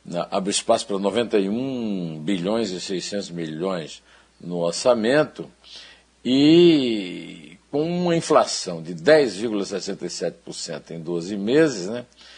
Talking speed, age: 95 wpm, 60-79